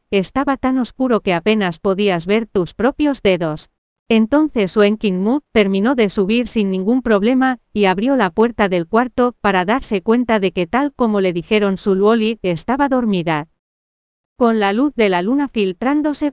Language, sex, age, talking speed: English, female, 40-59, 170 wpm